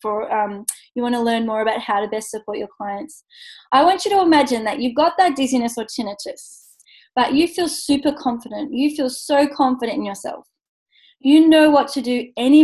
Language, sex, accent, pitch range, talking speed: English, female, Australian, 225-280 Hz, 205 wpm